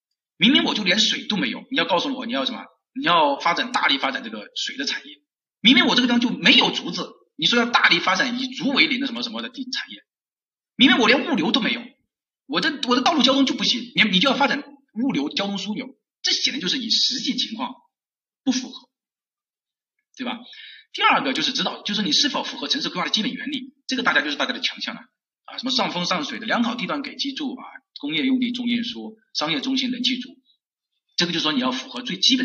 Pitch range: 240-275 Hz